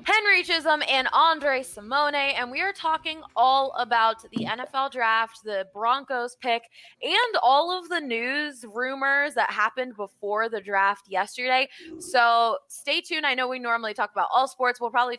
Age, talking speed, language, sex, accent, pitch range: 20-39, 165 wpm, English, female, American, 215-280 Hz